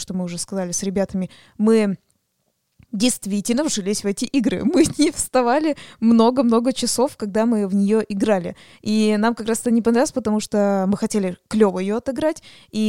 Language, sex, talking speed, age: Russian, female, 170 wpm, 20-39